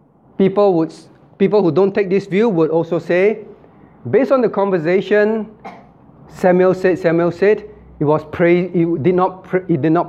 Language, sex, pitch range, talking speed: English, male, 160-200 Hz, 160 wpm